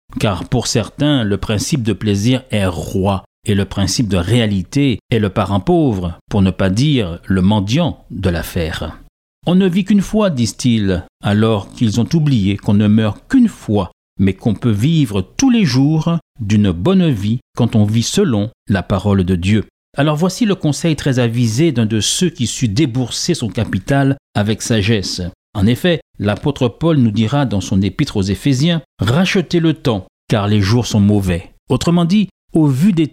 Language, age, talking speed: French, 50-69, 180 wpm